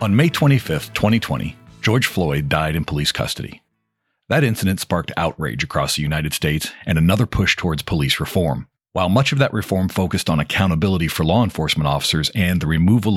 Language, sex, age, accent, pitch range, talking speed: English, male, 40-59, American, 85-120 Hz, 180 wpm